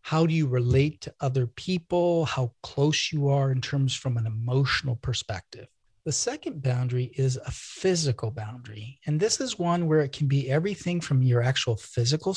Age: 50-69